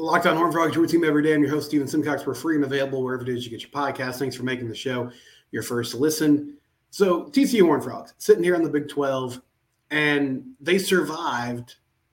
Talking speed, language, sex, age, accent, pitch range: 220 wpm, English, male, 30-49, American, 125-145 Hz